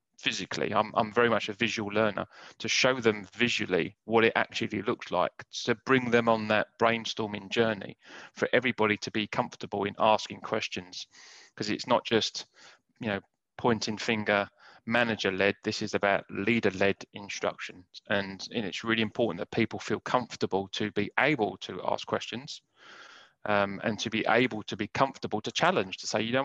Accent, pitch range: British, 105-120 Hz